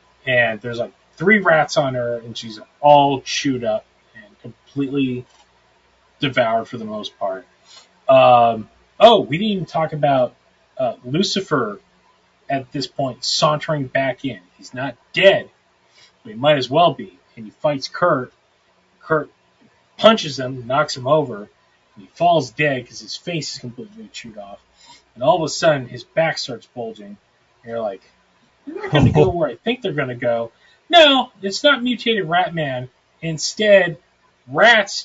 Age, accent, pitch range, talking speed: 30-49, American, 130-200 Hz, 160 wpm